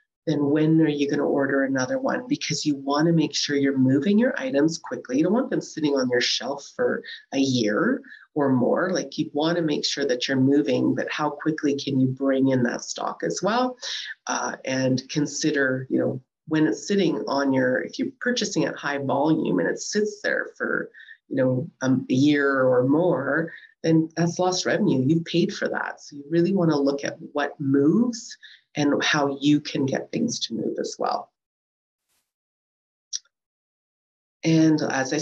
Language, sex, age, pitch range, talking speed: English, female, 30-49, 140-180 Hz, 190 wpm